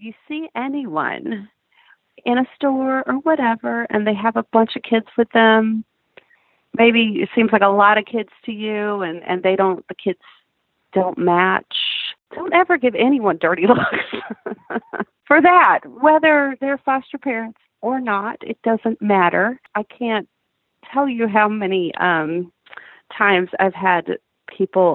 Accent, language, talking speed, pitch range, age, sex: American, English, 150 wpm, 180-240 Hz, 40-59, female